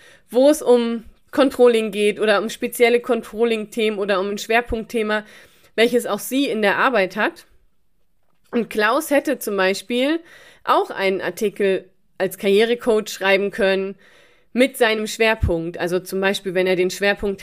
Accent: German